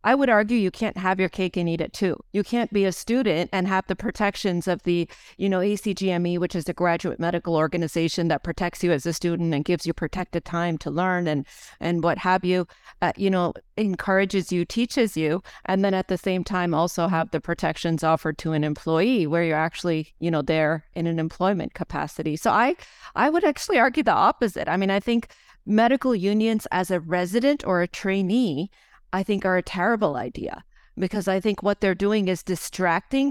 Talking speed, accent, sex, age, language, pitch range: 210 wpm, American, female, 40-59, English, 170-205 Hz